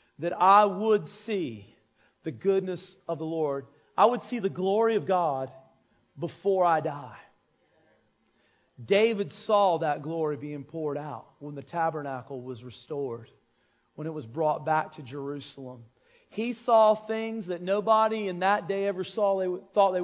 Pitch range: 170-235 Hz